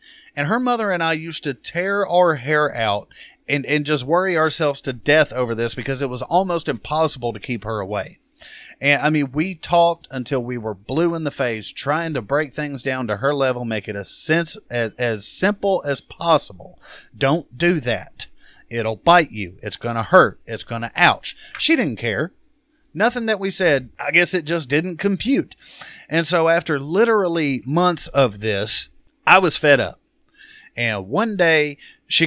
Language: English